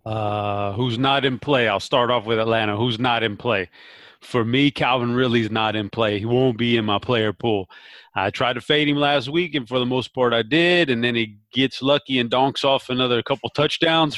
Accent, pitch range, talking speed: American, 115-135 Hz, 225 wpm